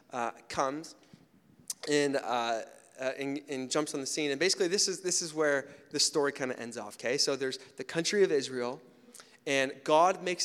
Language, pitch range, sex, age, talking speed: English, 135-170 Hz, male, 30-49, 195 wpm